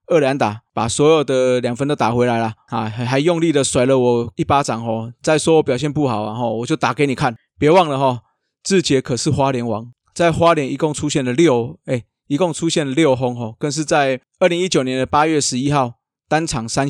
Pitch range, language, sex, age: 120-155 Hz, Chinese, male, 20-39